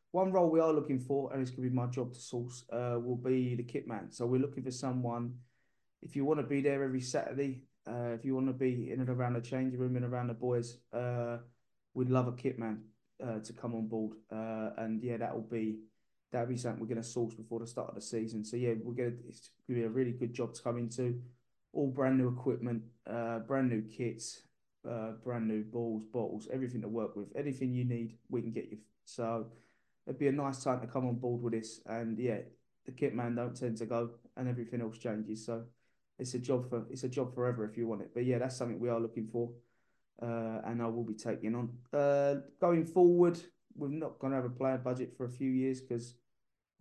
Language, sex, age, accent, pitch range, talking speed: English, male, 20-39, British, 115-130 Hz, 240 wpm